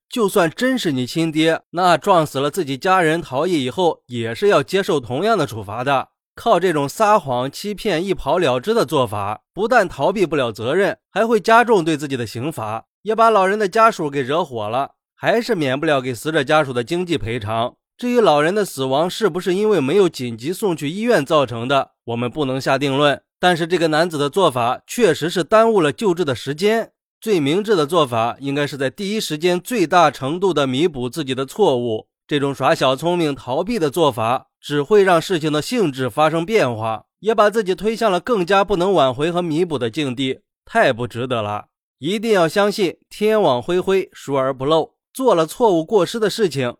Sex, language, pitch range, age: male, Chinese, 130-185 Hz, 20-39